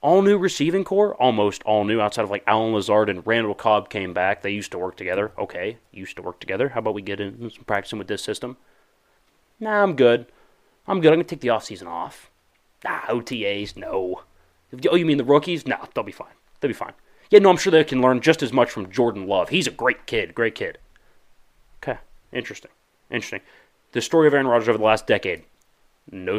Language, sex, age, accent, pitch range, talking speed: English, male, 30-49, American, 105-150 Hz, 215 wpm